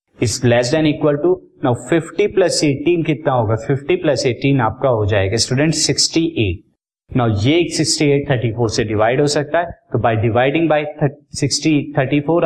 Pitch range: 120-155 Hz